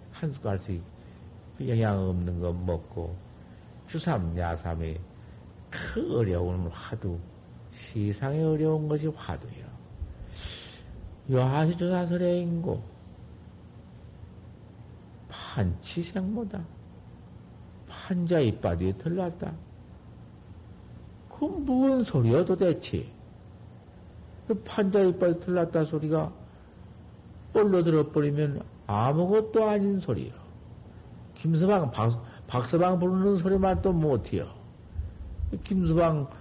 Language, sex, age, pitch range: Korean, male, 50-69, 95-160 Hz